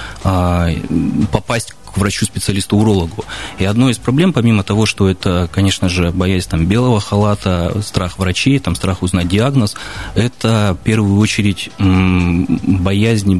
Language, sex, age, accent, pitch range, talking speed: Russian, male, 20-39, native, 90-110 Hz, 135 wpm